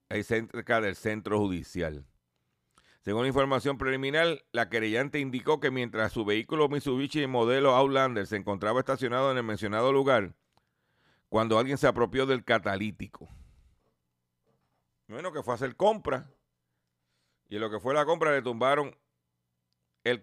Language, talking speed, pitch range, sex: Spanish, 140 wpm, 95-145 Hz, male